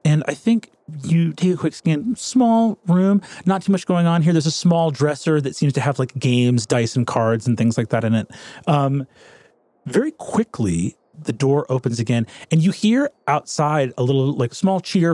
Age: 30-49